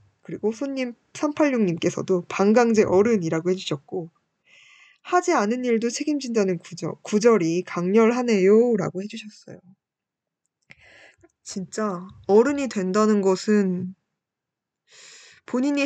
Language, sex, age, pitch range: Korean, female, 20-39, 190-245 Hz